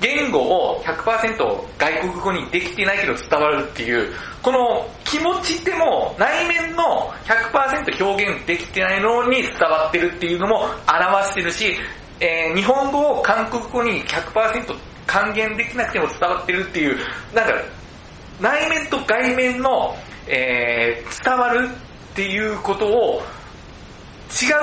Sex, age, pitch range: male, 40-59, 195-280 Hz